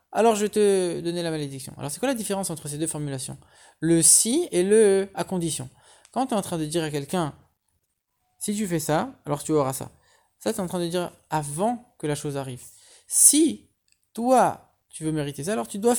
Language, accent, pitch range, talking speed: English, French, 155-220 Hz, 225 wpm